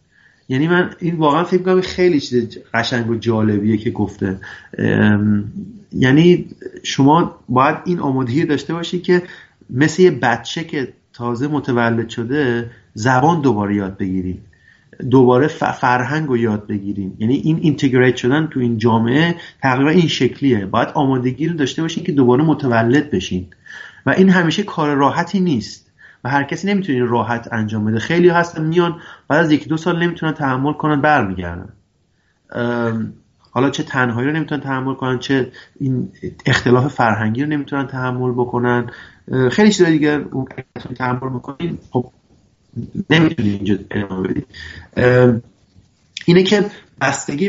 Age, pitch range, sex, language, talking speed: 30-49, 115-160 Hz, male, Persian, 135 wpm